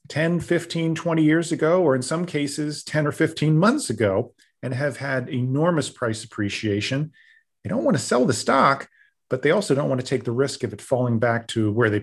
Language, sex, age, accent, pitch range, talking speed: English, male, 40-59, American, 110-155 Hz, 215 wpm